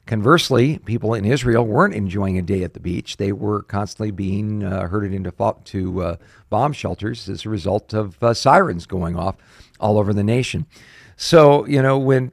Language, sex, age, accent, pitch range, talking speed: English, male, 50-69, American, 95-120 Hz, 190 wpm